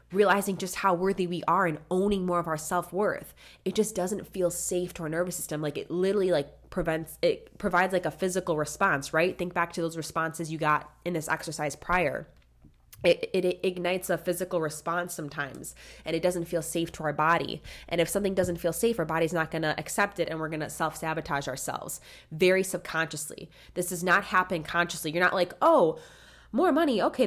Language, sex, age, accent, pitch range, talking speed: English, female, 20-39, American, 160-195 Hz, 200 wpm